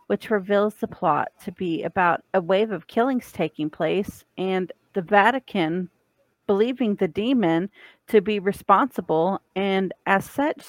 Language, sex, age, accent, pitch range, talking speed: English, female, 40-59, American, 180-220 Hz, 140 wpm